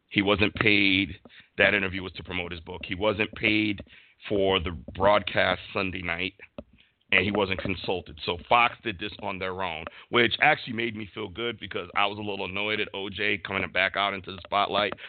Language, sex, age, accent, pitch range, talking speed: English, male, 50-69, American, 95-120 Hz, 195 wpm